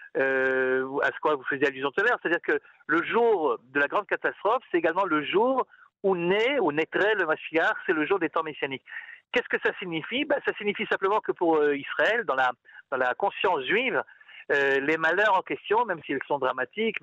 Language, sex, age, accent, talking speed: French, male, 50-69, French, 205 wpm